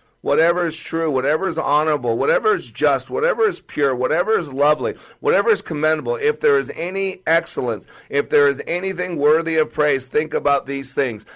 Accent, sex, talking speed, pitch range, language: American, male, 180 wpm, 135-170 Hz, English